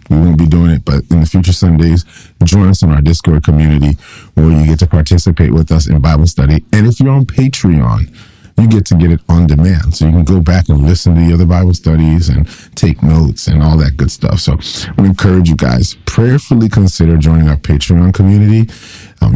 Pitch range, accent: 80-90 Hz, American